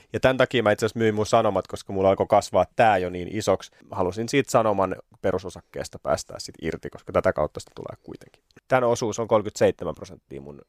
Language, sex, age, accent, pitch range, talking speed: Finnish, male, 30-49, native, 95-115 Hz, 210 wpm